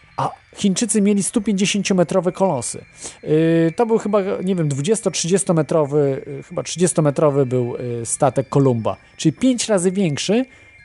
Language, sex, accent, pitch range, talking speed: Polish, male, native, 125-185 Hz, 110 wpm